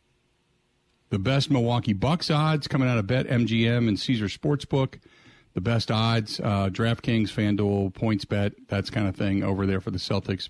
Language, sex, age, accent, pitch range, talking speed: English, male, 50-69, American, 110-145 Hz, 170 wpm